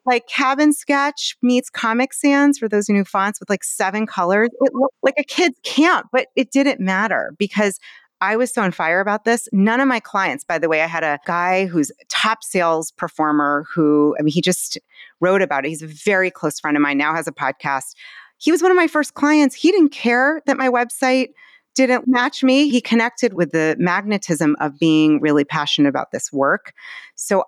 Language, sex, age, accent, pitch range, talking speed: English, female, 30-49, American, 170-250 Hz, 210 wpm